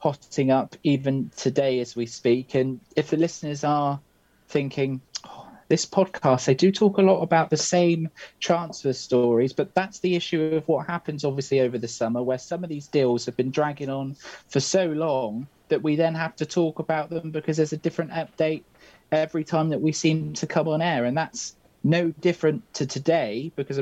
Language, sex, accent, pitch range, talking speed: English, male, British, 120-155 Hz, 195 wpm